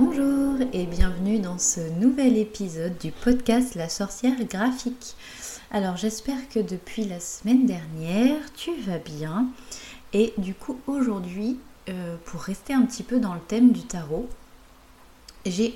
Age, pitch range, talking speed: 30-49, 170-235 Hz, 140 wpm